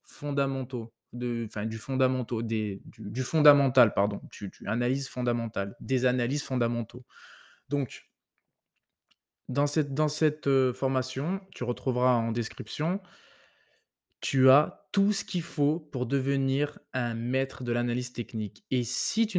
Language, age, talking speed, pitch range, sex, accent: French, 20-39, 120 wpm, 120-150 Hz, male, French